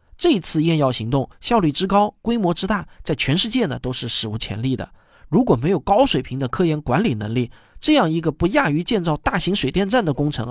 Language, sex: Chinese, male